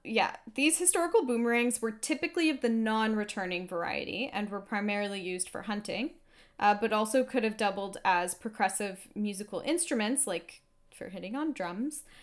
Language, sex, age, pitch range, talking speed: English, female, 10-29, 190-250 Hz, 150 wpm